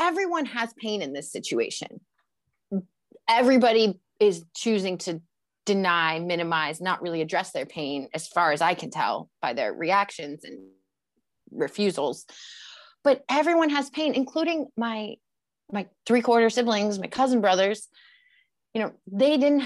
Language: English